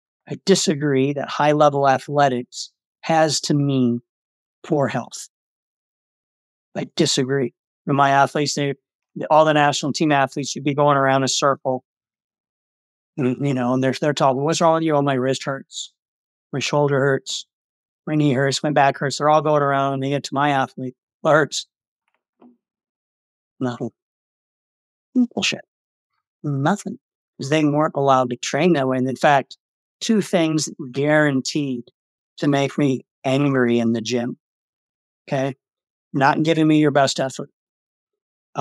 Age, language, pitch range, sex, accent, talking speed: 50-69, English, 130-150 Hz, male, American, 145 wpm